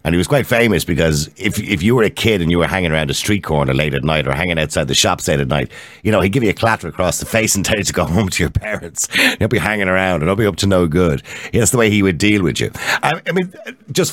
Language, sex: English, male